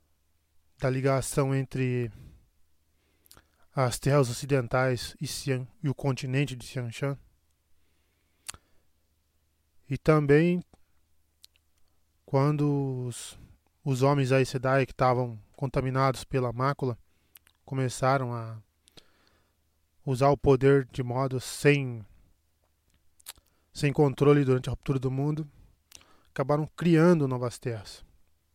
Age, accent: 20-39, Brazilian